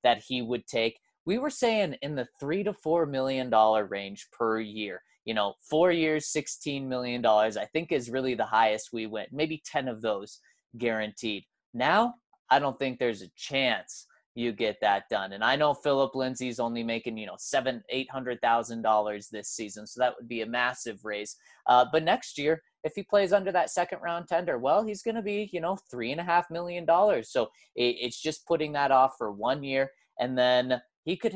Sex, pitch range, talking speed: male, 115-170 Hz, 200 wpm